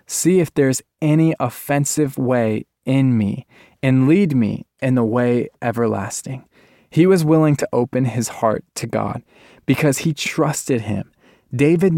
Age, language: 20-39, English